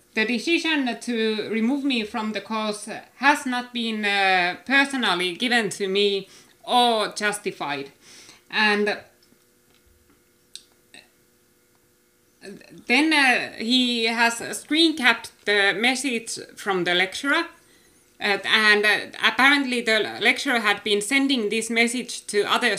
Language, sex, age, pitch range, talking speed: English, female, 20-39, 200-255 Hz, 110 wpm